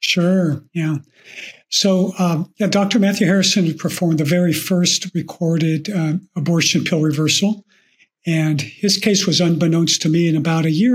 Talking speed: 155 wpm